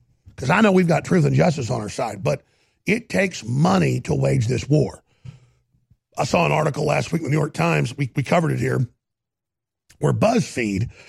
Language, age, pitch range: English, 50-69, 125-185 Hz